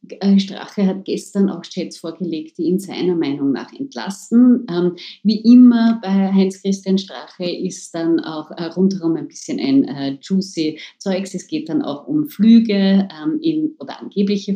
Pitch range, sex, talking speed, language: 175-225 Hz, female, 145 wpm, German